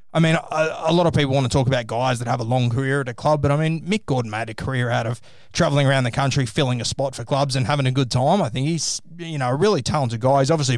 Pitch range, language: 120-145 Hz, English